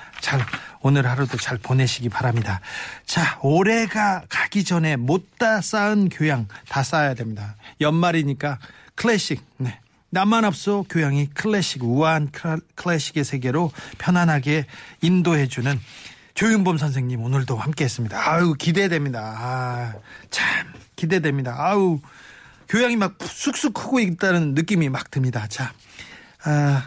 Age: 40-59